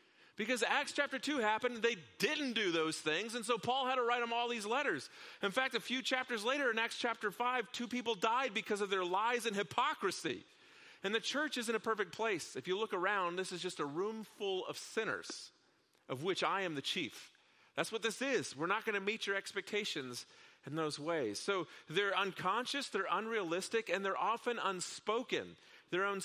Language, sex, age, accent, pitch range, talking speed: English, male, 40-59, American, 190-240 Hz, 205 wpm